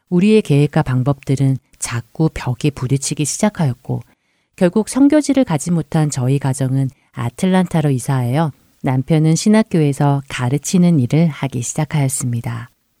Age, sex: 40-59, female